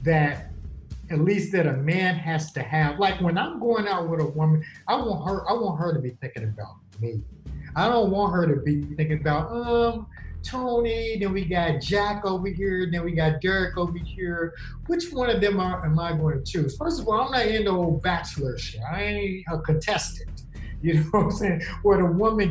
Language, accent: English, American